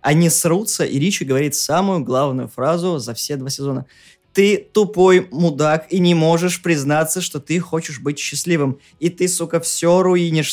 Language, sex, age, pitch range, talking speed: Russian, male, 20-39, 130-175 Hz, 165 wpm